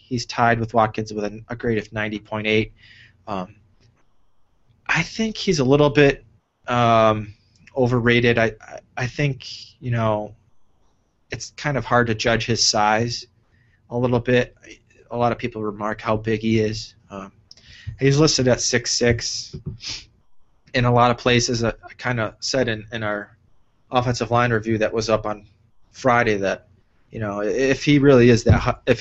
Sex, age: male, 20-39